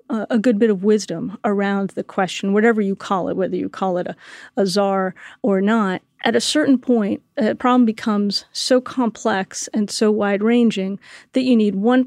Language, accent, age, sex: English, American, 40-59, female